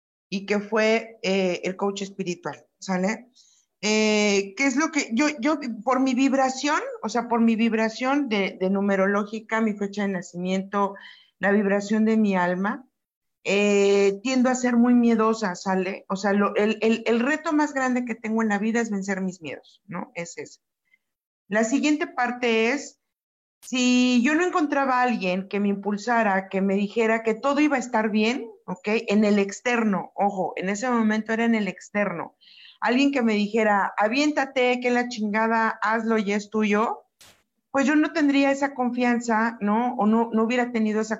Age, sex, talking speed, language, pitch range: 50-69, female, 180 wpm, Spanish, 200-245 Hz